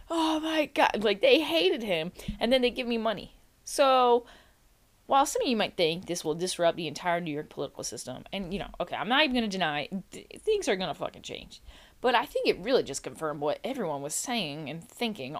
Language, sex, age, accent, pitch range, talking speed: English, female, 20-39, American, 170-250 Hz, 225 wpm